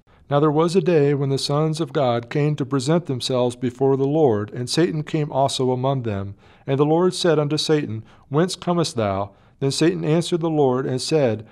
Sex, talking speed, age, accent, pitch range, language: male, 205 wpm, 40-59, American, 125-155 Hz, English